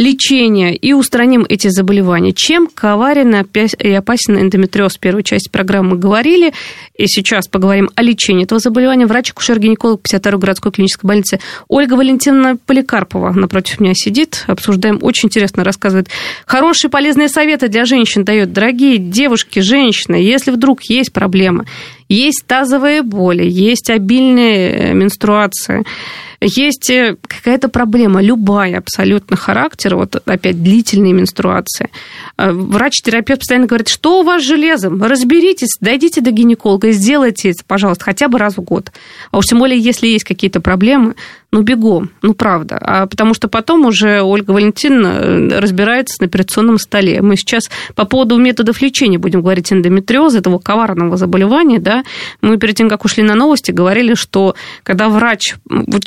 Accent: native